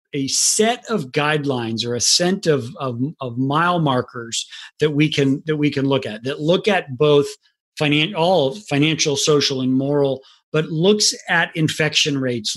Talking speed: 165 wpm